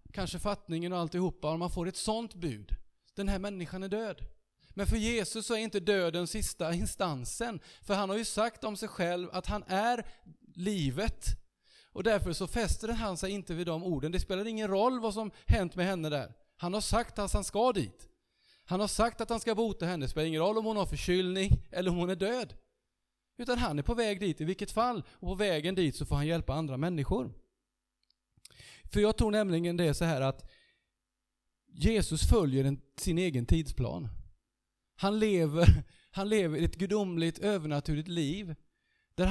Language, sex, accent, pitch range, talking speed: Swedish, male, Norwegian, 155-205 Hz, 190 wpm